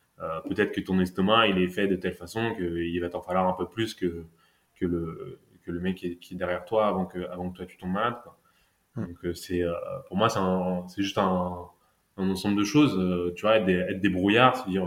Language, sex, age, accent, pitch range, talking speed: French, male, 20-39, French, 90-100 Hz, 230 wpm